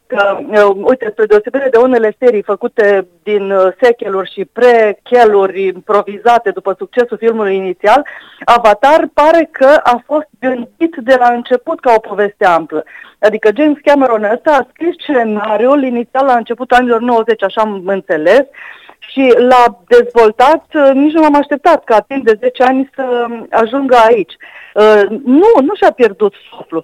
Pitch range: 210-265 Hz